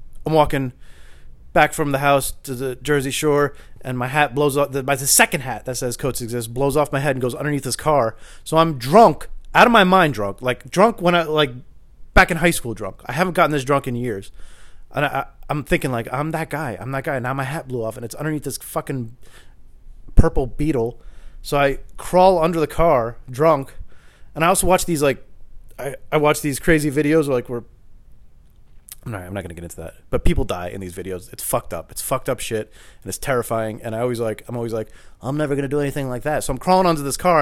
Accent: American